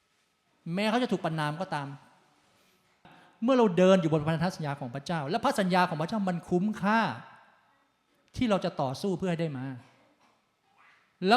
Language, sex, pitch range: Thai, male, 145-190 Hz